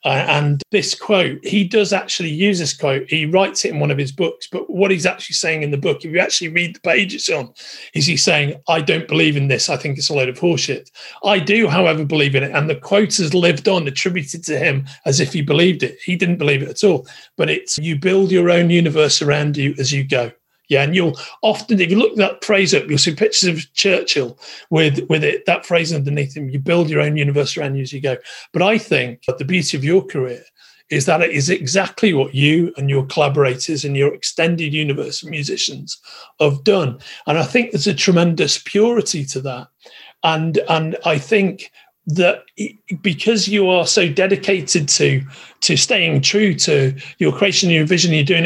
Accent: British